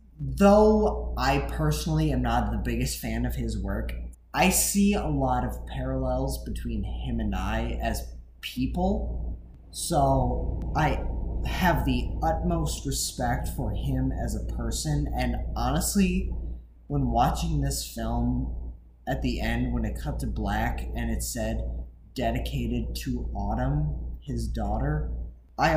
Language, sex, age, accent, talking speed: English, male, 20-39, American, 135 wpm